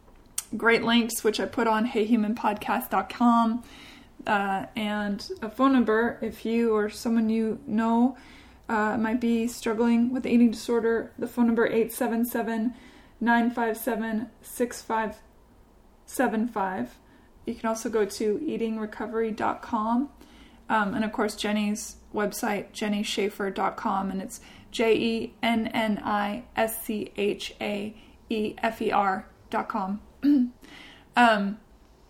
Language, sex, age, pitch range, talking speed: English, female, 20-39, 215-240 Hz, 90 wpm